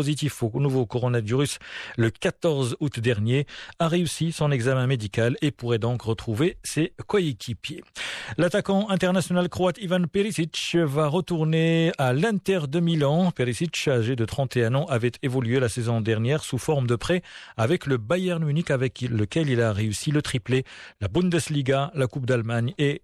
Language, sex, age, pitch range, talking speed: Arabic, male, 40-59, 120-155 Hz, 160 wpm